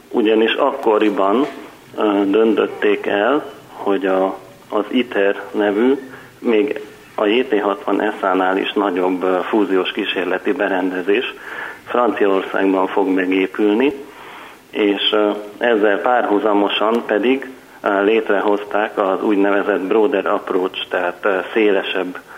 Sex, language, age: male, Hungarian, 40-59